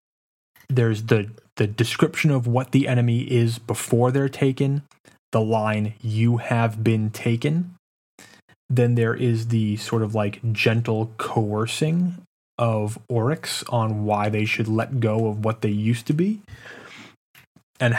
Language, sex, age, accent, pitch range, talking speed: English, male, 20-39, American, 105-120 Hz, 140 wpm